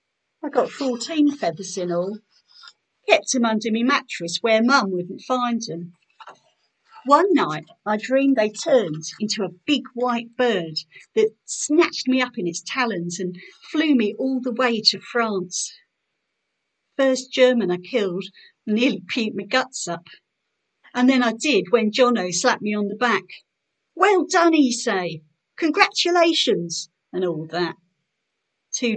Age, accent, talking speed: 50-69, British, 145 wpm